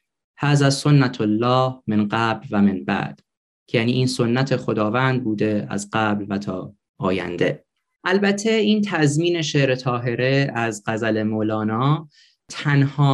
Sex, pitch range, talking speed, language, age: male, 110-140 Hz, 130 wpm, Persian, 20-39